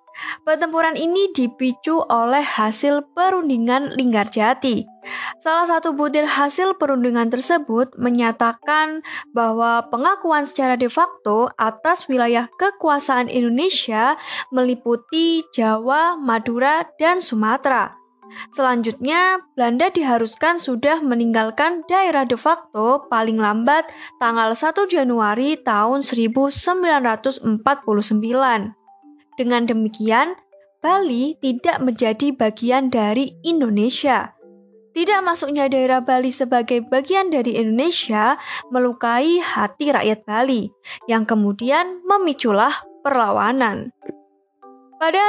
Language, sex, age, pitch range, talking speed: Indonesian, female, 10-29, 235-315 Hz, 90 wpm